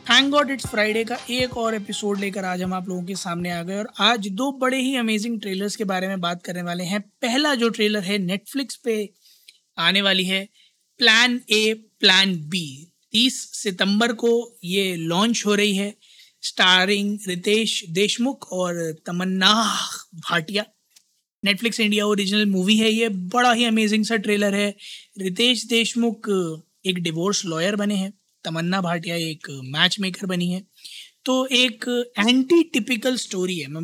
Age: 20-39